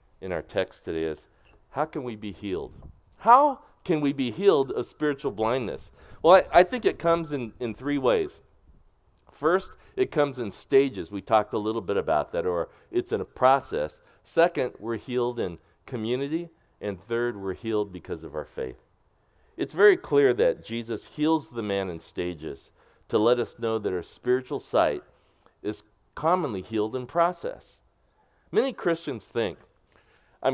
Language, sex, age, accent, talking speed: English, male, 50-69, American, 165 wpm